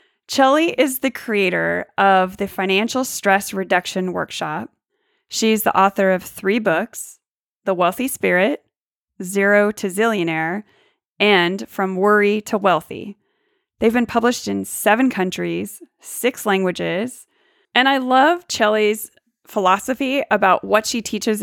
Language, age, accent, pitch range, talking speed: English, 30-49, American, 190-230 Hz, 125 wpm